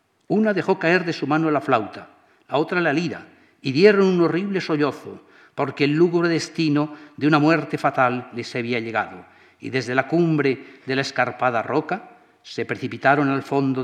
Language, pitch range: Spanish, 125-160 Hz